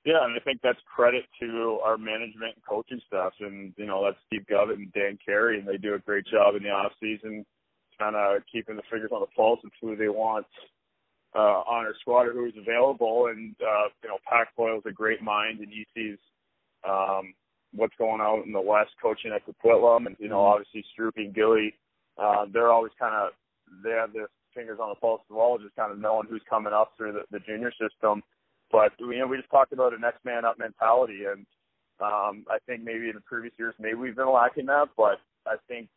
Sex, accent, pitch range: male, American, 105-115 Hz